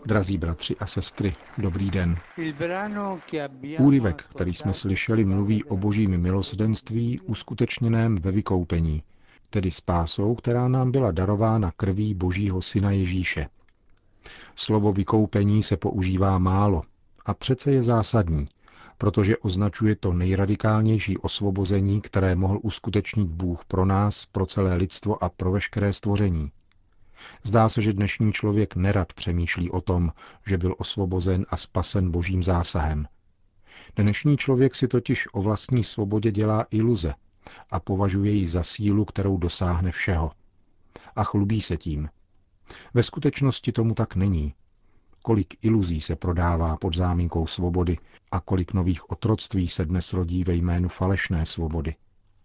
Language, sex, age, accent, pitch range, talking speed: Czech, male, 40-59, native, 90-110 Hz, 130 wpm